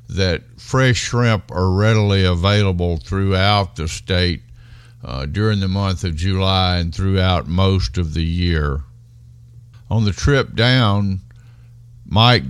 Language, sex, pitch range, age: English, male, 95-120 Hz, 50-69